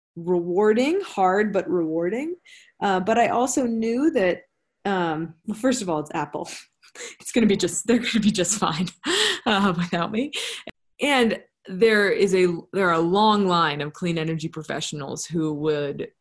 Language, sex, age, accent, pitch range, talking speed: English, female, 30-49, American, 160-210 Hz, 165 wpm